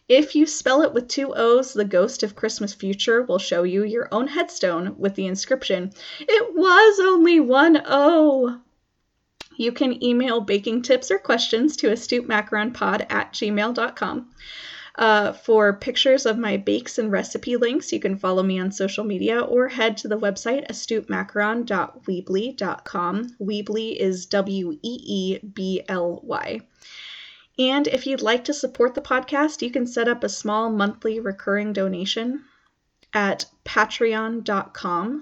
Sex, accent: female, American